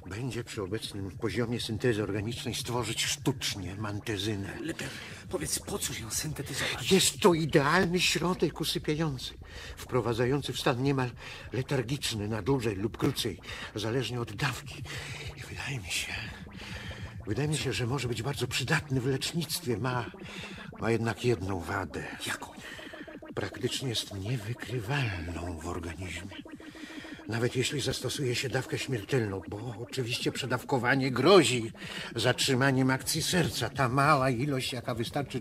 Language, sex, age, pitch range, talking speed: Polish, male, 50-69, 100-145 Hz, 125 wpm